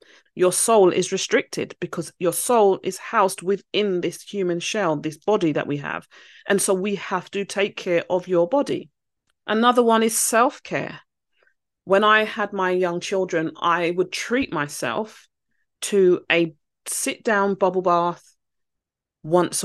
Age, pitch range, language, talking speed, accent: 30-49, 160-200 Hz, English, 145 wpm, British